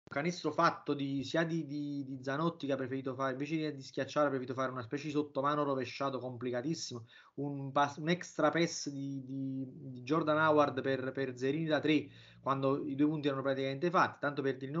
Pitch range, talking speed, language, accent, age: 125-155 Hz, 195 wpm, Italian, native, 30-49